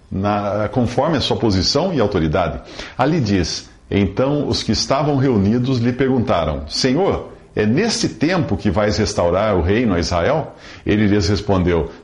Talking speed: 145 wpm